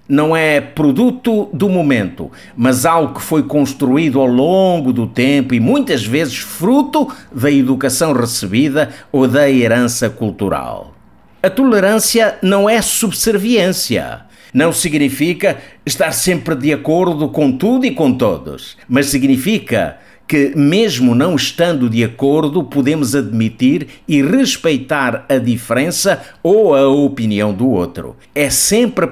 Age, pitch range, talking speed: 50-69, 130-180 Hz, 130 wpm